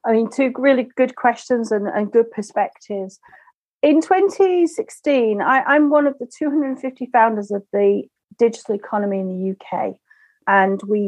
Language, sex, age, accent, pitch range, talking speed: English, female, 40-59, British, 200-275 Hz, 145 wpm